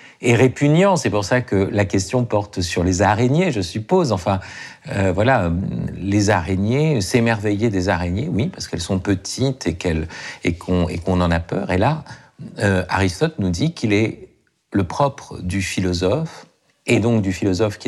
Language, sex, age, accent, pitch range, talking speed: French, male, 50-69, French, 95-130 Hz, 175 wpm